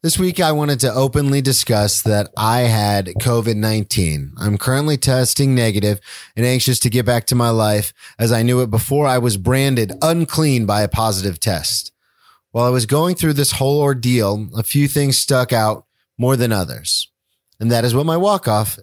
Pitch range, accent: 105-130 Hz, American